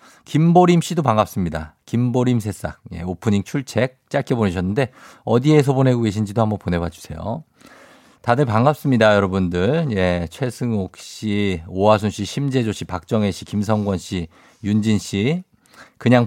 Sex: male